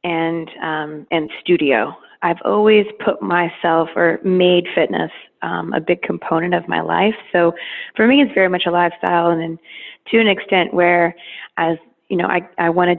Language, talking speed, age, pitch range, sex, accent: English, 175 wpm, 20-39, 165-190 Hz, female, American